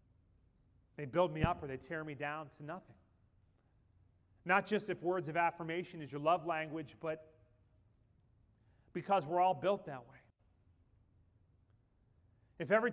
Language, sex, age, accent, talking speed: English, male, 30-49, American, 140 wpm